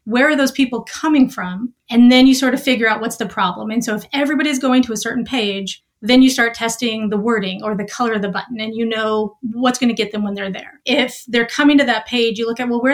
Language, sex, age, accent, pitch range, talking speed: English, female, 30-49, American, 215-255 Hz, 275 wpm